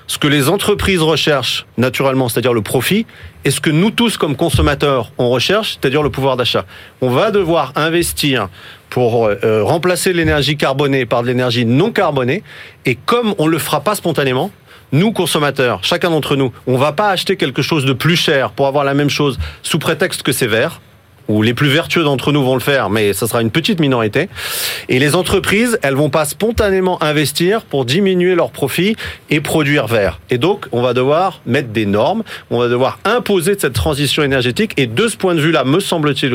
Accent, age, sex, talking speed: French, 40-59, male, 200 wpm